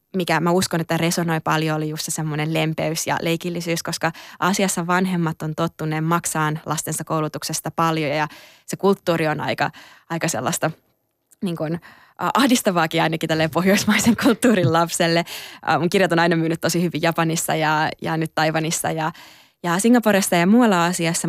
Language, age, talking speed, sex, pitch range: Finnish, 20-39, 150 wpm, female, 155-180 Hz